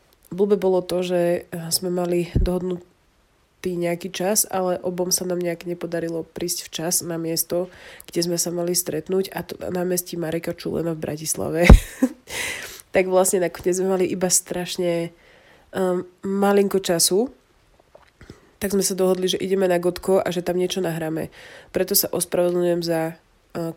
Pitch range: 170-185 Hz